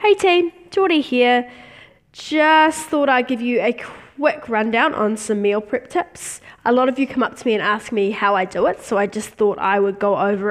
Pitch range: 200-250 Hz